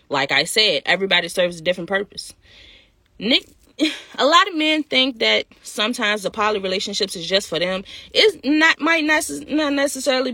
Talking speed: 155 wpm